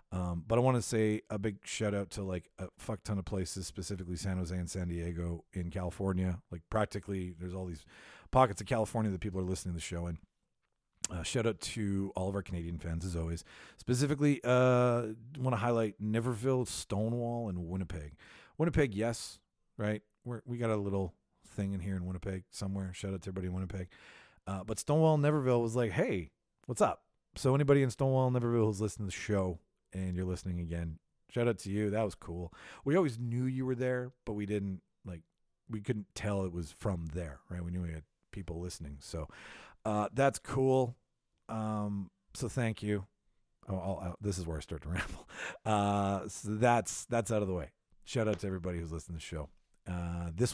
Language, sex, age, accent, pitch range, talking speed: English, male, 40-59, American, 90-115 Hz, 200 wpm